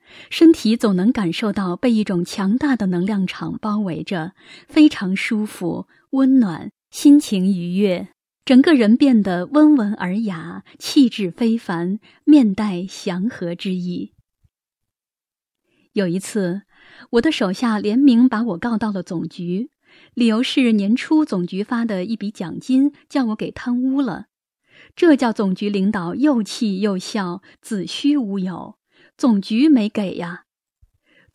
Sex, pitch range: female, 195-275 Hz